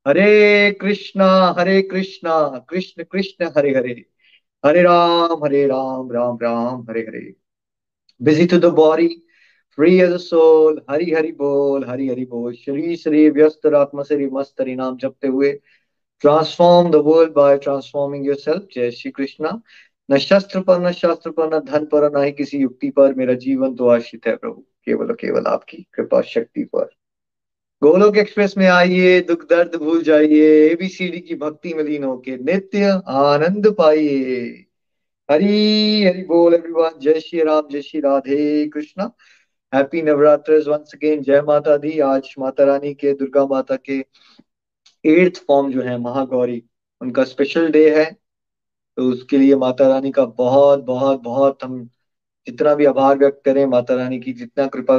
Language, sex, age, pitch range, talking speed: Hindi, male, 20-39, 135-170 Hz, 145 wpm